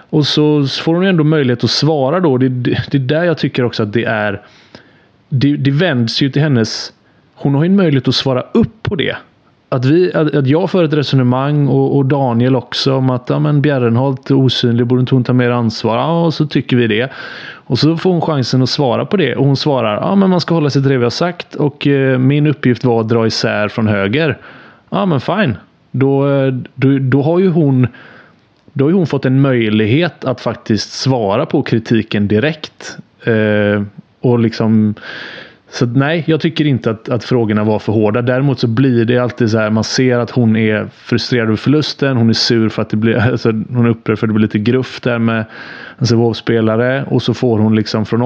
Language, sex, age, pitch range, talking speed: English, male, 30-49, 115-135 Hz, 220 wpm